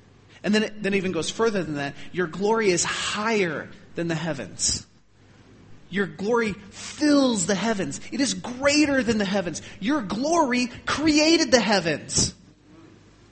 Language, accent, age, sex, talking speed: English, American, 30-49, male, 145 wpm